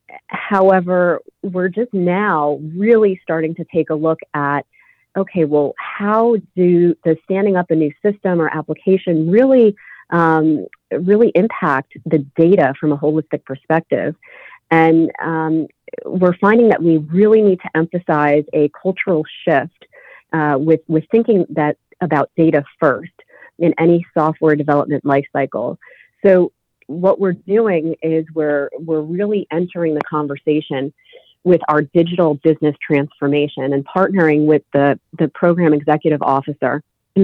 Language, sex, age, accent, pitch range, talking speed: English, female, 40-59, American, 145-185 Hz, 135 wpm